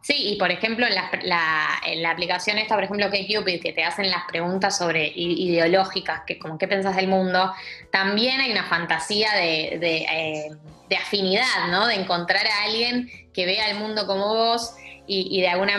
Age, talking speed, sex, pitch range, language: 20-39, 200 wpm, female, 180-225 Hz, Spanish